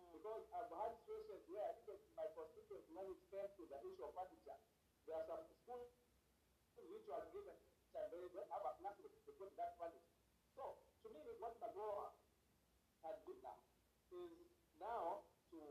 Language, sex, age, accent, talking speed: English, male, 50-69, South African, 160 wpm